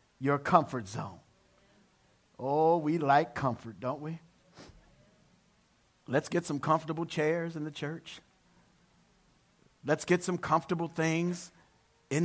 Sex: male